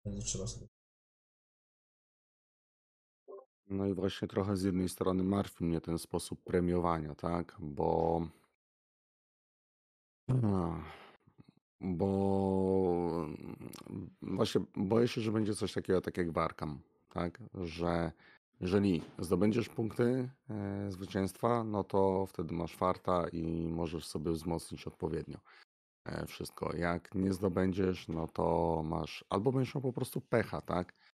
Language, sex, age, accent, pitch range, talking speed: Polish, male, 40-59, native, 85-95 Hz, 105 wpm